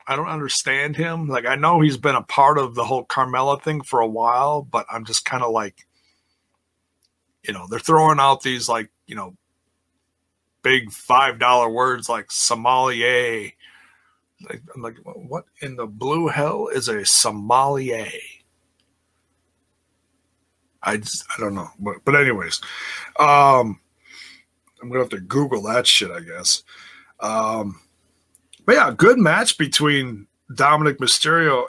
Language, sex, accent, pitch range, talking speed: English, male, American, 90-150 Hz, 145 wpm